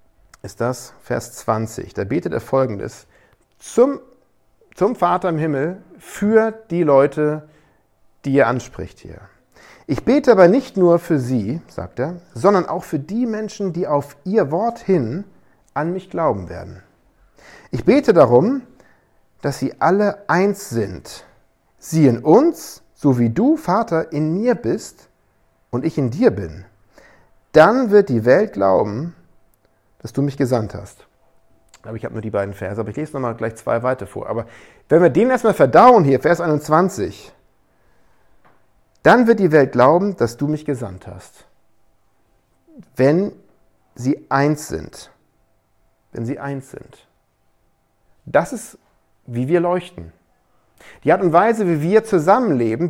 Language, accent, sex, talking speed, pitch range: German, German, male, 150 wpm, 120-185 Hz